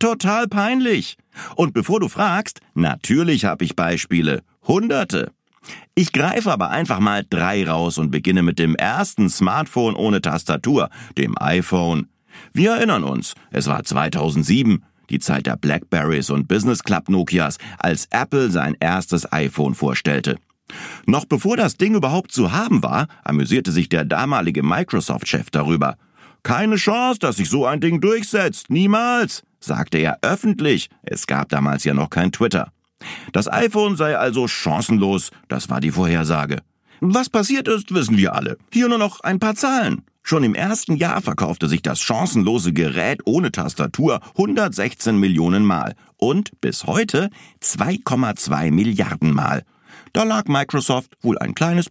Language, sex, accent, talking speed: German, male, German, 150 wpm